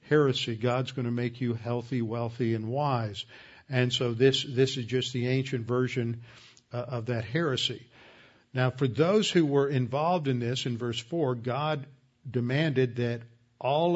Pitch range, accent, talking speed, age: 125-140 Hz, American, 160 wpm, 50-69